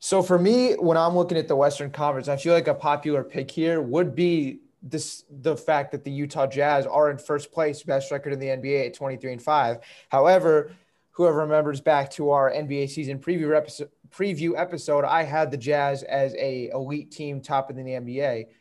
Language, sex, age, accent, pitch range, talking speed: English, male, 20-39, American, 140-160 Hz, 195 wpm